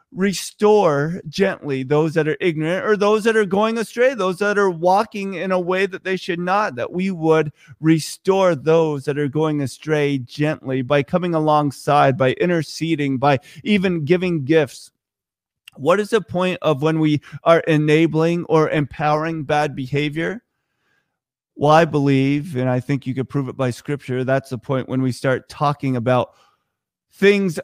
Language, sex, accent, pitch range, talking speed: English, male, American, 140-185 Hz, 165 wpm